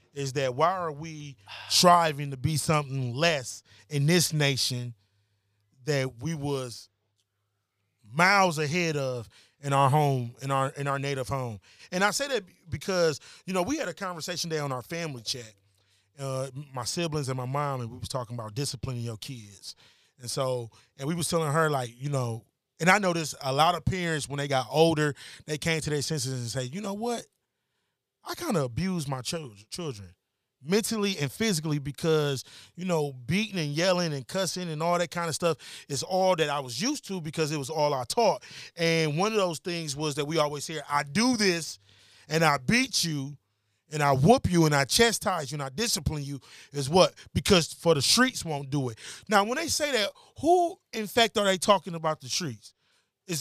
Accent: American